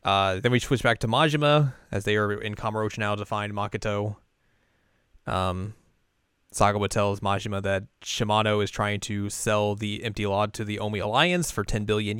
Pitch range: 105-125 Hz